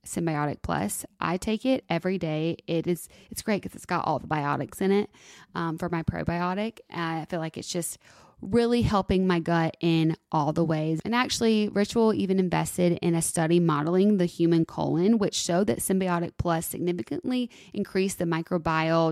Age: 20-39